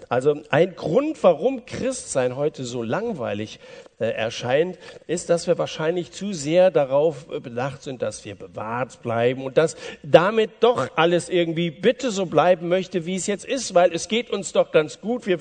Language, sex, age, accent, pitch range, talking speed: German, male, 50-69, German, 160-240 Hz, 175 wpm